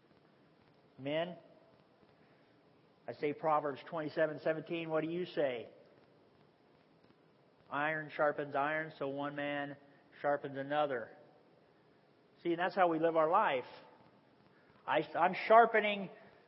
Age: 40-59